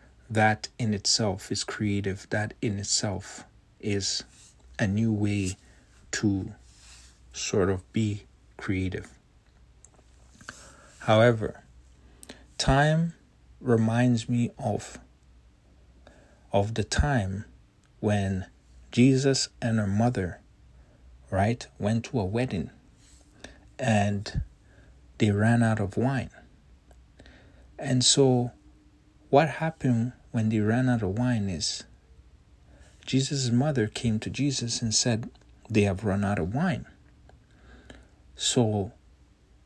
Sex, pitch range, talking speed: male, 70-120 Hz, 100 wpm